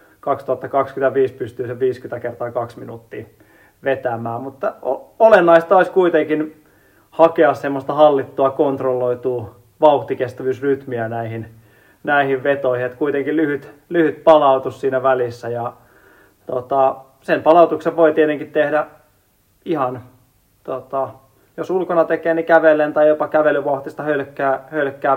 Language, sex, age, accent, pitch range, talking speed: Finnish, male, 30-49, native, 125-150 Hz, 105 wpm